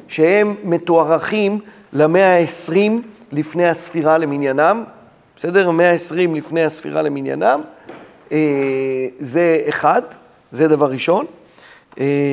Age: 40-59